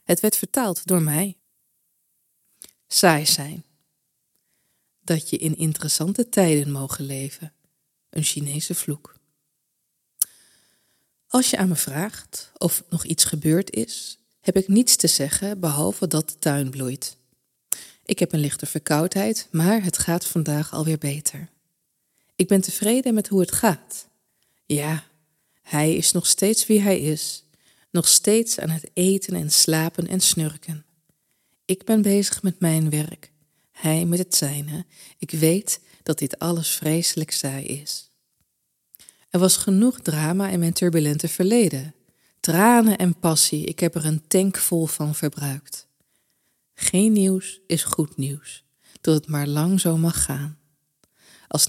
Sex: female